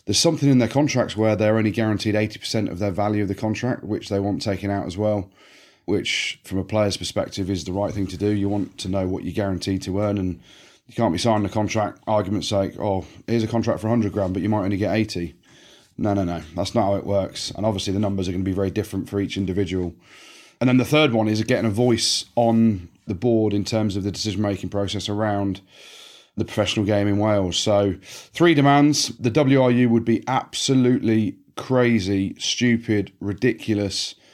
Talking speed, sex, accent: 215 wpm, male, British